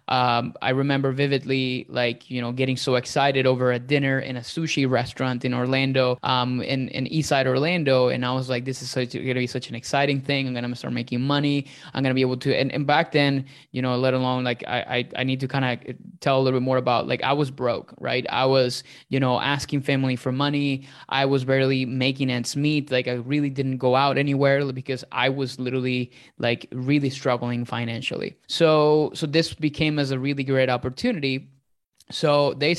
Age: 20-39